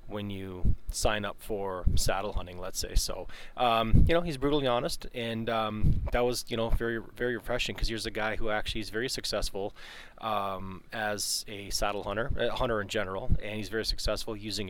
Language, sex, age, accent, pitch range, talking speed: English, male, 20-39, American, 100-115 Hz, 195 wpm